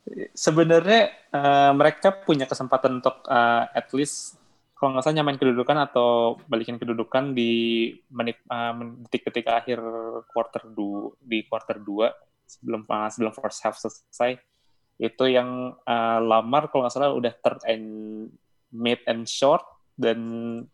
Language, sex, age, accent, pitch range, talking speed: Indonesian, male, 20-39, native, 115-140 Hz, 140 wpm